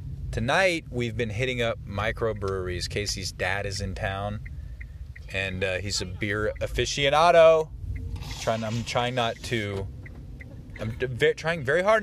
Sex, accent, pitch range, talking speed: male, American, 90-115 Hz, 130 wpm